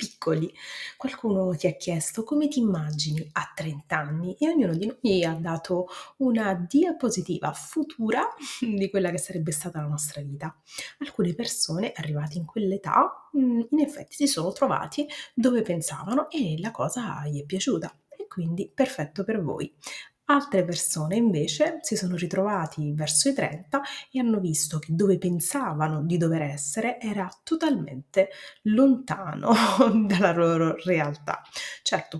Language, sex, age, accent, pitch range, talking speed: Italian, female, 30-49, native, 155-215 Hz, 140 wpm